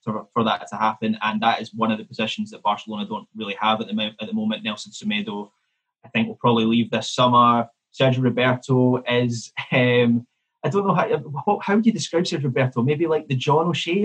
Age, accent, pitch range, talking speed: 20-39, British, 110-150 Hz, 215 wpm